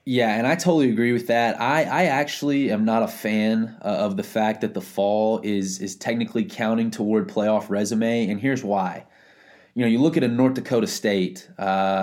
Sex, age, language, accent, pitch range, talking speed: male, 20-39, English, American, 110-130 Hz, 205 wpm